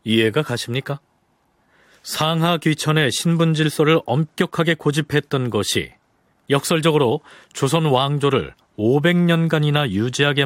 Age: 40-59